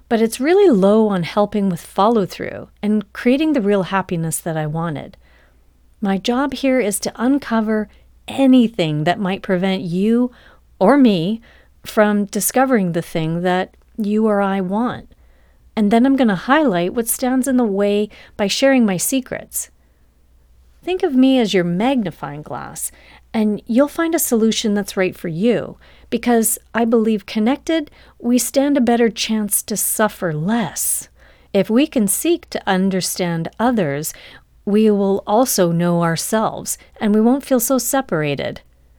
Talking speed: 150 wpm